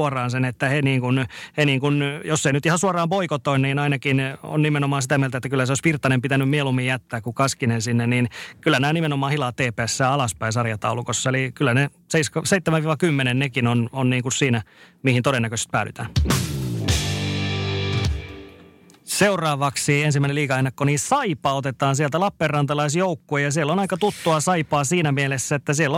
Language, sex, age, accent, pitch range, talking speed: Finnish, male, 30-49, native, 130-160 Hz, 165 wpm